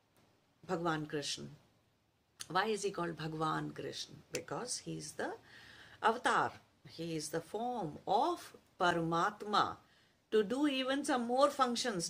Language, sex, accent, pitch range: English, female, Indian, 155-205 Hz